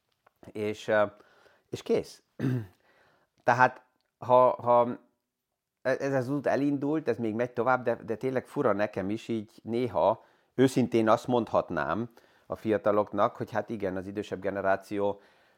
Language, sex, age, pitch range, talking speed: Hungarian, male, 30-49, 100-115 Hz, 125 wpm